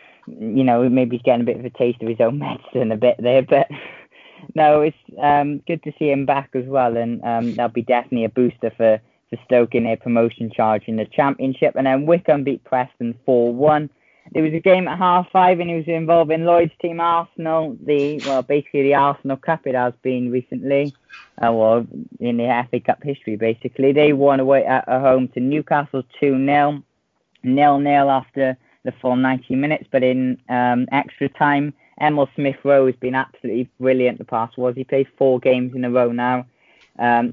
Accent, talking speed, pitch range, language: British, 200 wpm, 120-145 Hz, English